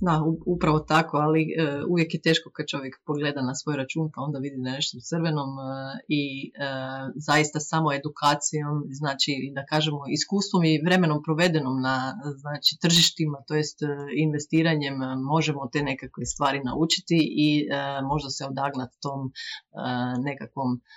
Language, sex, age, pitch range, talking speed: Croatian, female, 30-49, 135-155 Hz, 130 wpm